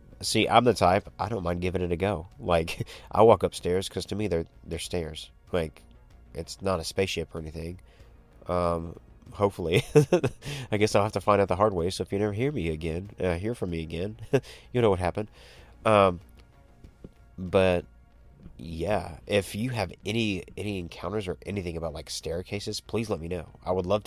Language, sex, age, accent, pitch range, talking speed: English, male, 30-49, American, 85-105 Hz, 190 wpm